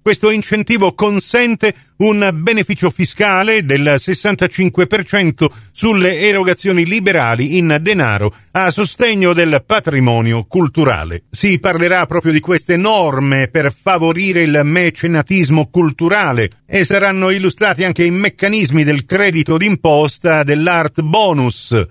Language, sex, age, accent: Italian, male, 50-69, native